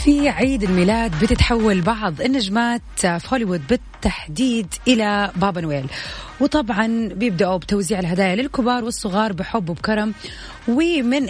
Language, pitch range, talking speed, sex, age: Arabic, 190-240 Hz, 110 wpm, female, 30-49